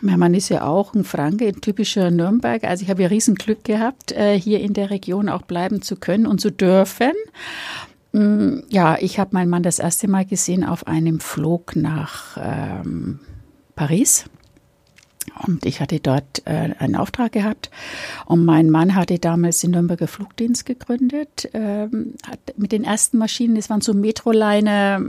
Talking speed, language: 165 wpm, German